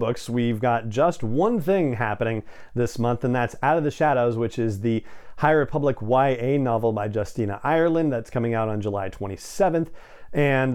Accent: American